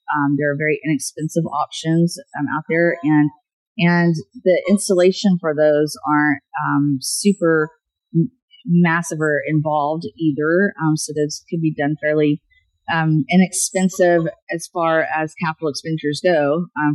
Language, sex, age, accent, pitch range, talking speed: English, female, 30-49, American, 145-170 Hz, 140 wpm